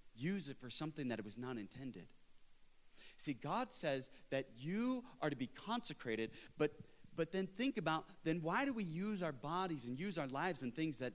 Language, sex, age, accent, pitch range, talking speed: English, male, 30-49, American, 135-190 Hz, 200 wpm